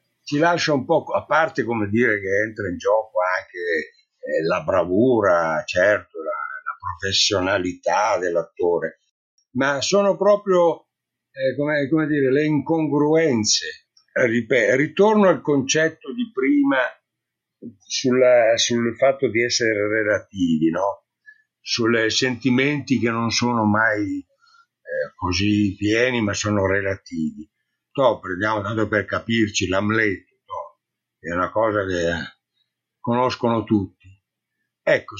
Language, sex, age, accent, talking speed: Italian, male, 60-79, native, 105 wpm